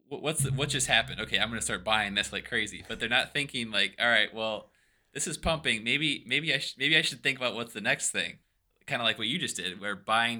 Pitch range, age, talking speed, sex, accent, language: 100-120 Hz, 20-39, 270 wpm, male, American, English